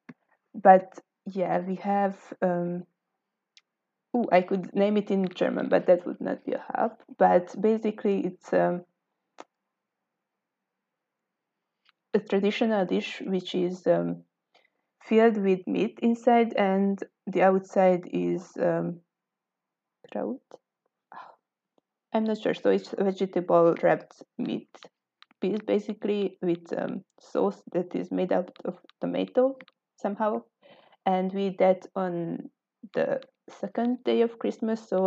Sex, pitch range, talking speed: female, 180-220 Hz, 120 wpm